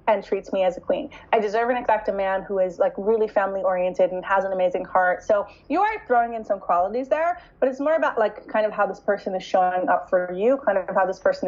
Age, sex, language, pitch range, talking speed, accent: 20-39, female, English, 190-255 Hz, 265 wpm, American